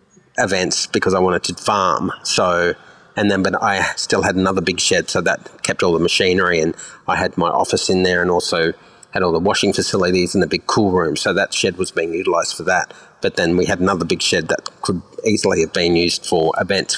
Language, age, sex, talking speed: English, 30-49, male, 225 wpm